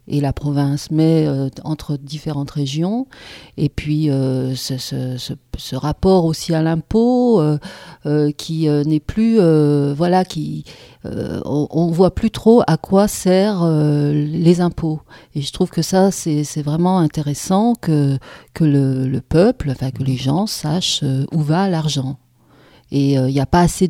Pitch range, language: 140-165 Hz, French